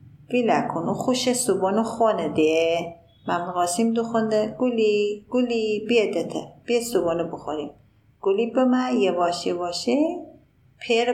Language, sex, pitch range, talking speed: Persian, female, 190-245 Hz, 115 wpm